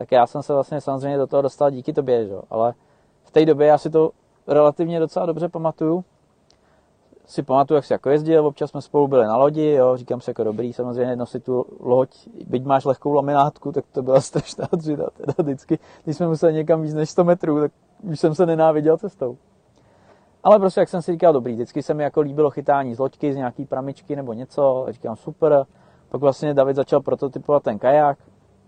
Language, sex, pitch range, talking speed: Czech, male, 120-155 Hz, 205 wpm